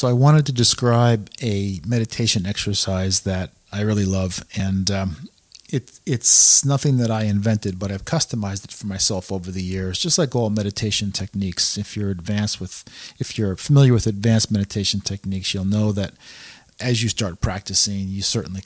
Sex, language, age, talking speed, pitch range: male, English, 40-59, 170 wpm, 100-125 Hz